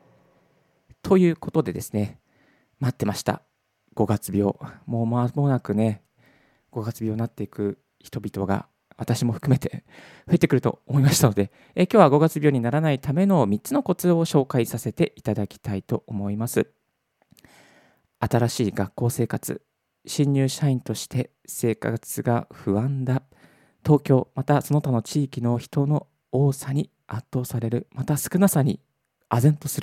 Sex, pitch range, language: male, 115-160 Hz, Japanese